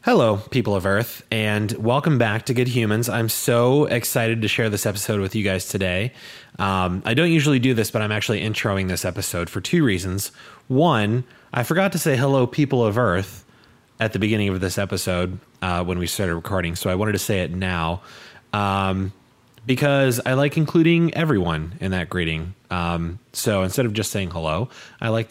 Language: English